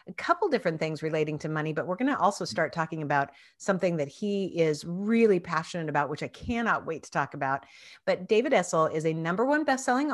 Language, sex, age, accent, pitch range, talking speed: English, female, 40-59, American, 160-225 Hz, 220 wpm